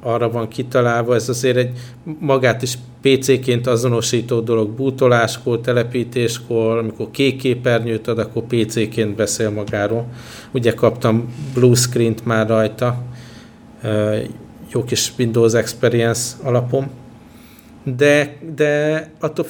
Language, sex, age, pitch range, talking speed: Hungarian, male, 50-69, 110-125 Hz, 110 wpm